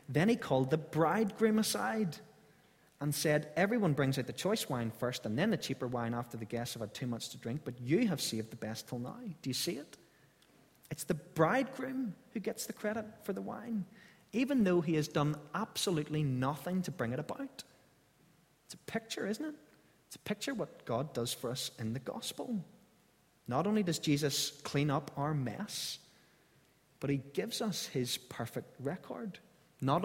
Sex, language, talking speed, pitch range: male, English, 190 wpm, 125-170 Hz